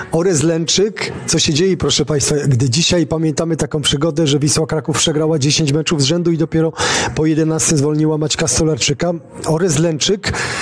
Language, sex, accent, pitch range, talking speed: Polish, male, native, 150-170 Hz, 165 wpm